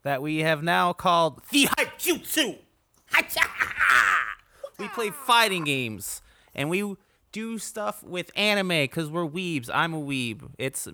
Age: 20-39